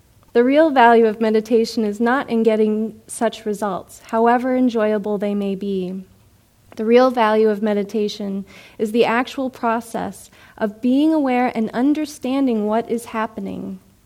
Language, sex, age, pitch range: English, female, 30-49, 215-260 Hz